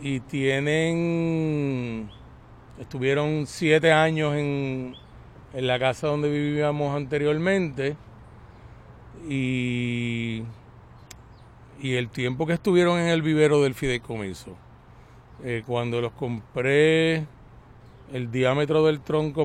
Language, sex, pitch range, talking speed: Spanish, male, 115-150 Hz, 95 wpm